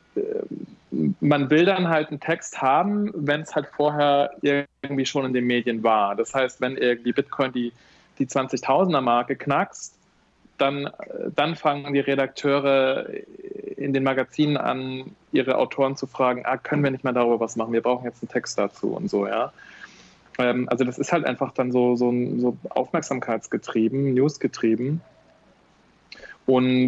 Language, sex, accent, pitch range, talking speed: German, male, German, 125-145 Hz, 150 wpm